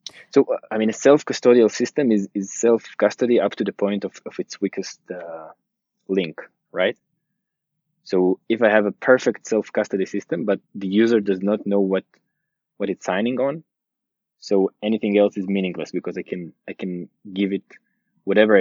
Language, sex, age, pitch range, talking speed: English, male, 20-39, 95-120 Hz, 170 wpm